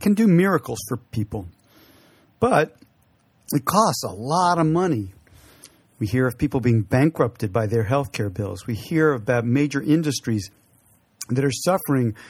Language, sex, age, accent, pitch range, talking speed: English, male, 50-69, American, 115-150 Hz, 150 wpm